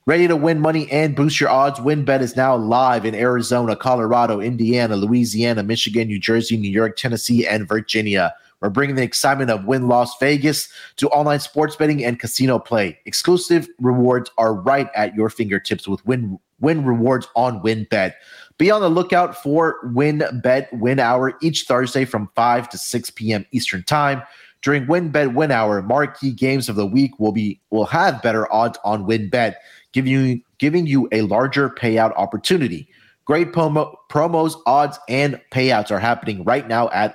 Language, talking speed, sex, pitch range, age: English, 170 wpm, male, 110-145 Hz, 30-49